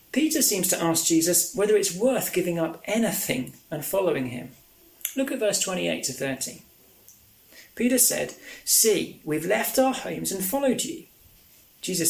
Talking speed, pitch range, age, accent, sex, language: 155 wpm, 185-260 Hz, 30-49, British, male, English